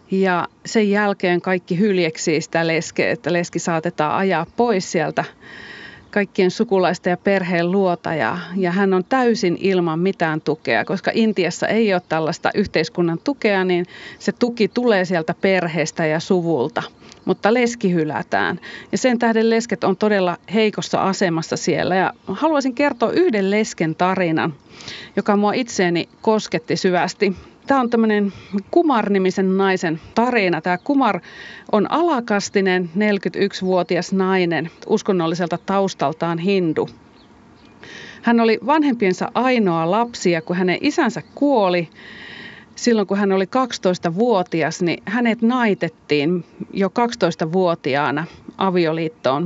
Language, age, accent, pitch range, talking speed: Finnish, 30-49, native, 175-220 Hz, 120 wpm